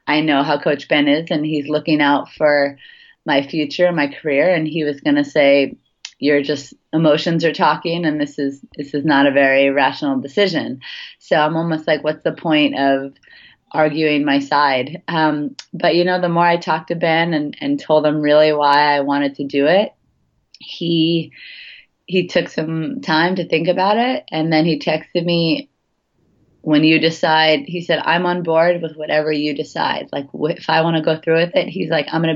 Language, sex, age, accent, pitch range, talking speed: English, female, 30-49, American, 145-170 Hz, 200 wpm